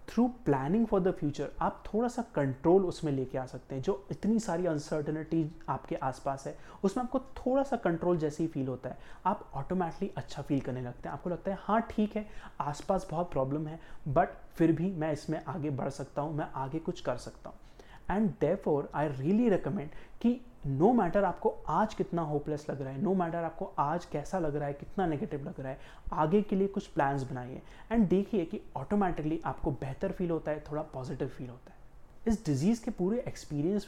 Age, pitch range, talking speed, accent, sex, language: 30-49, 145-195 Hz, 195 wpm, Indian, male, English